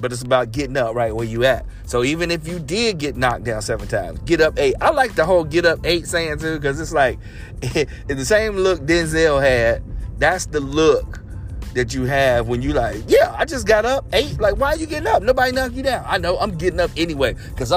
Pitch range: 115-155 Hz